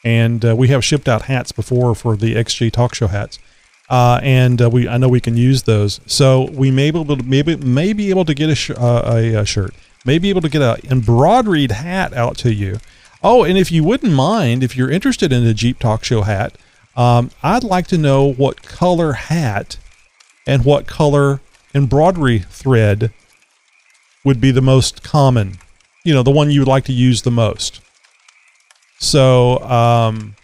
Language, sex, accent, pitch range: English, male, American, 115-140 Hz